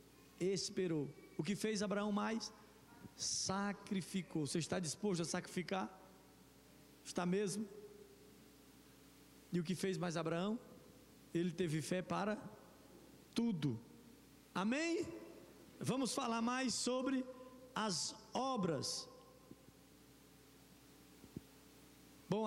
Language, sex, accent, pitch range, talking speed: Portuguese, male, Brazilian, 165-220 Hz, 85 wpm